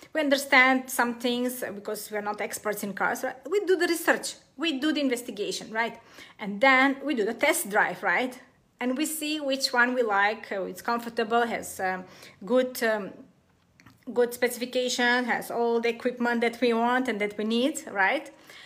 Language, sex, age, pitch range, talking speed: English, female, 30-49, 225-275 Hz, 180 wpm